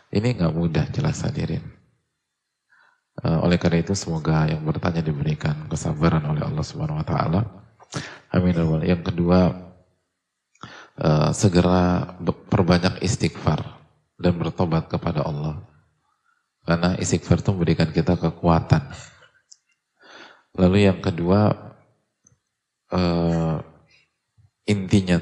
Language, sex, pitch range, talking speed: Indonesian, male, 85-105 Hz, 100 wpm